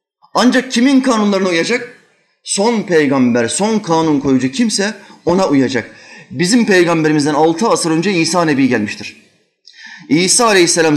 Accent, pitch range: native, 170-240 Hz